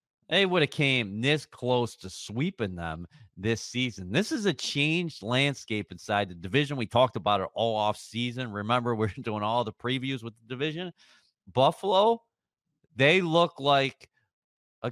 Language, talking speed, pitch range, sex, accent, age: English, 160 wpm, 110-155 Hz, male, American, 40-59